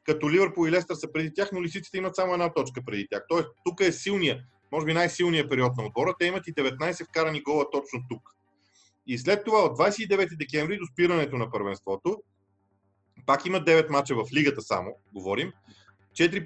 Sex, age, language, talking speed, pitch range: male, 40-59, Bulgarian, 190 wpm, 135-185 Hz